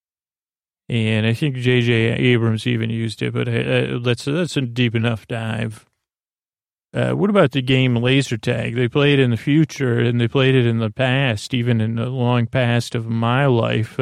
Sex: male